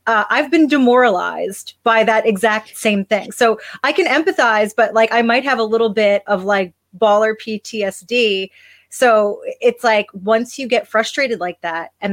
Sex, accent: female, American